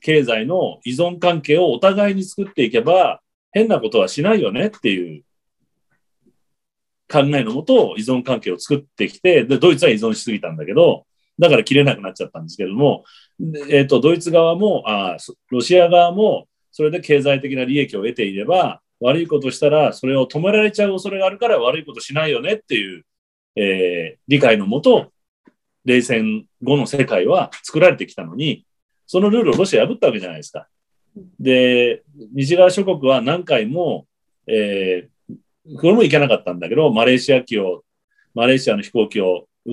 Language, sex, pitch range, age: Japanese, male, 120-190 Hz, 40-59